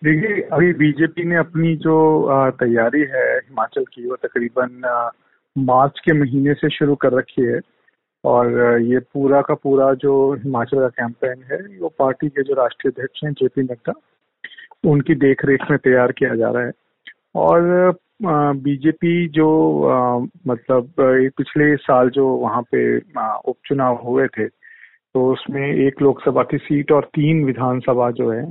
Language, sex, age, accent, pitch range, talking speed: Hindi, male, 40-59, native, 125-150 Hz, 145 wpm